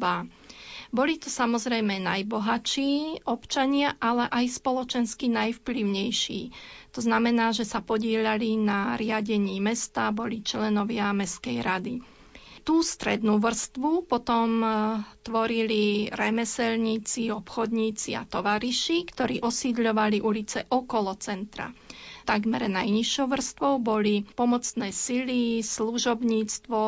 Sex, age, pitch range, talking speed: female, 30-49, 215-245 Hz, 95 wpm